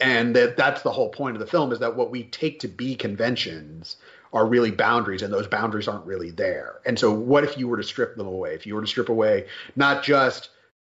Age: 30-49